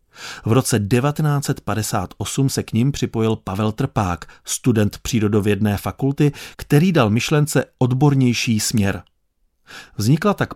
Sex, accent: male, native